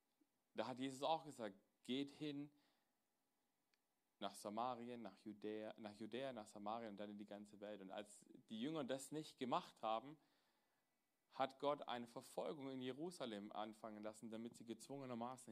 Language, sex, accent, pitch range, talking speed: German, male, German, 110-145 Hz, 150 wpm